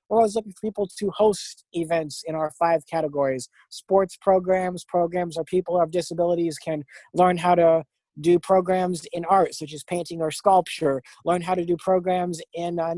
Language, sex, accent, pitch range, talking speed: English, male, American, 160-185 Hz, 190 wpm